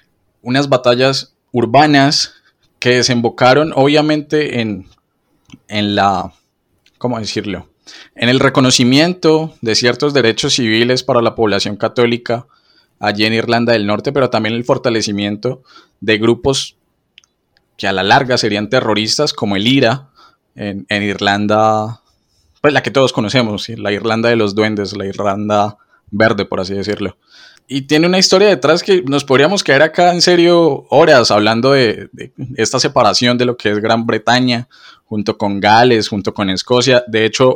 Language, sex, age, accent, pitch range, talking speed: Spanish, male, 10-29, Colombian, 105-130 Hz, 150 wpm